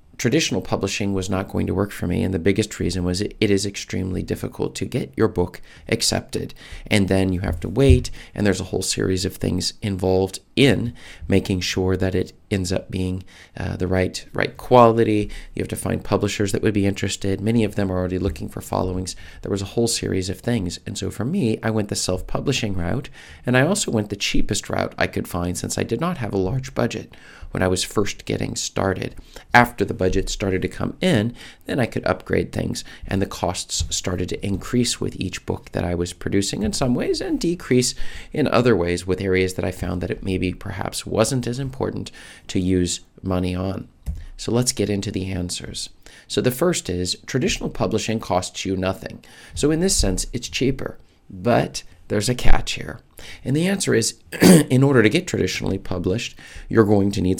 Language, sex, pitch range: English, male, 90-110 Hz